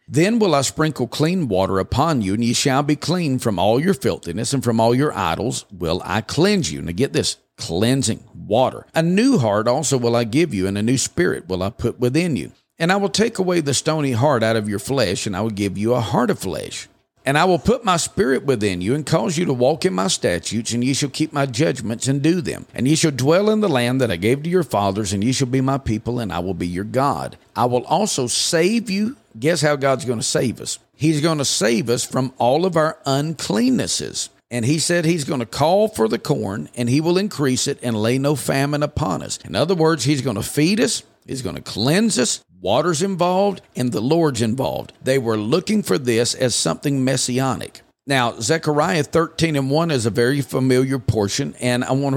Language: English